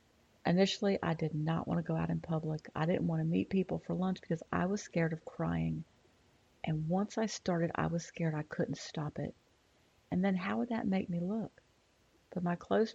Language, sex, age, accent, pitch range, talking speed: English, female, 40-59, American, 160-190 Hz, 215 wpm